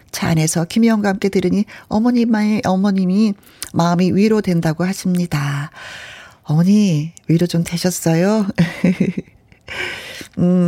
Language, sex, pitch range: Korean, female, 165-235 Hz